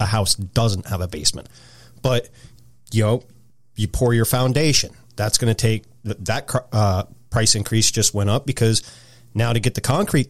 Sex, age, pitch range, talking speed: male, 30-49, 110-125 Hz, 175 wpm